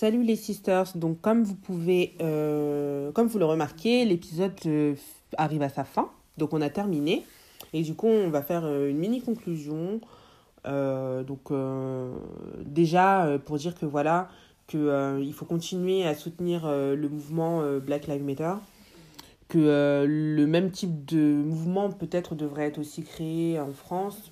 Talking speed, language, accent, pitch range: 165 wpm, French, French, 145-170 Hz